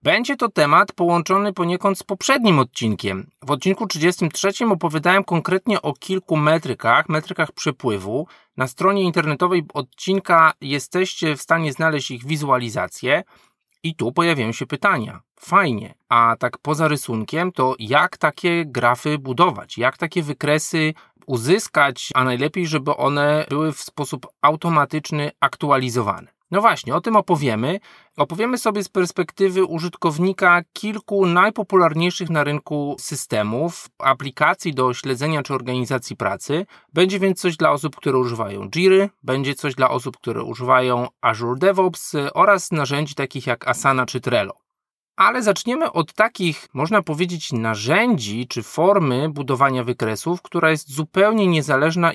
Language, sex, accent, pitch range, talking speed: Polish, male, native, 135-180 Hz, 130 wpm